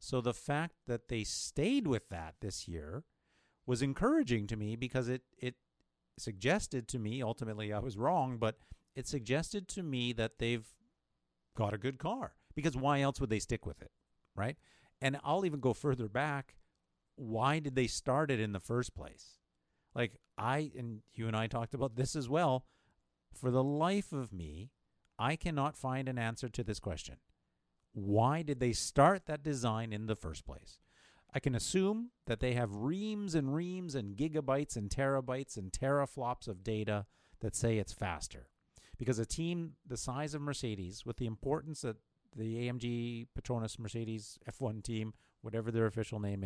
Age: 50-69